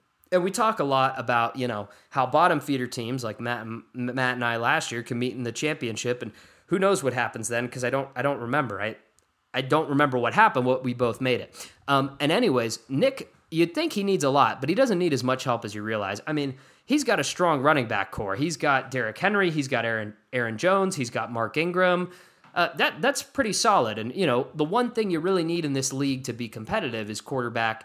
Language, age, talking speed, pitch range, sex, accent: English, 20-39, 245 wpm, 120-170 Hz, male, American